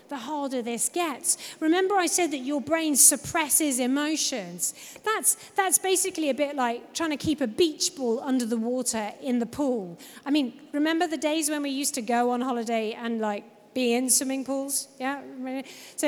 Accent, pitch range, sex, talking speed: British, 265-340 Hz, female, 185 wpm